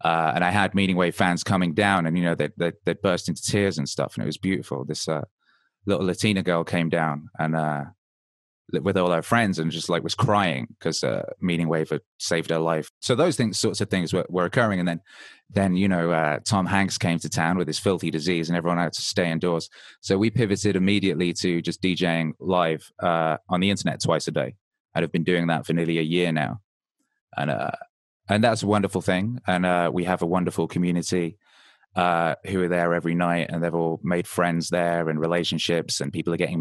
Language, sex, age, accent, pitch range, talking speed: English, male, 20-39, British, 85-95 Hz, 225 wpm